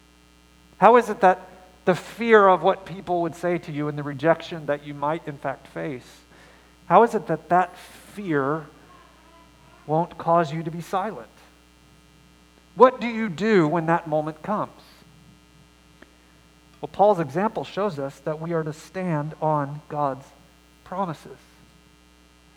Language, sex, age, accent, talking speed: English, male, 40-59, American, 145 wpm